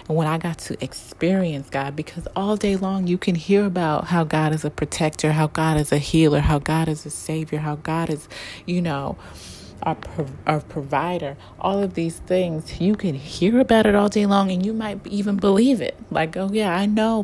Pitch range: 155-185 Hz